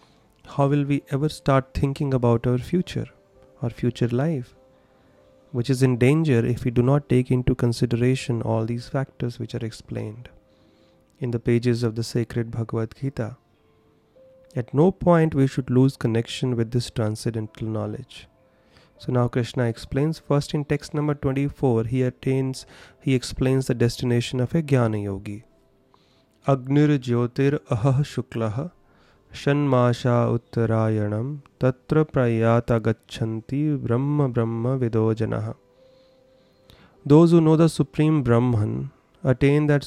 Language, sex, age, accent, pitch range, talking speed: English, male, 30-49, Indian, 115-140 Hz, 130 wpm